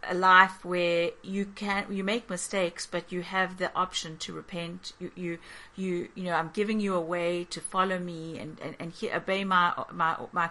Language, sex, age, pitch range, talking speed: English, female, 40-59, 170-205 Hz, 205 wpm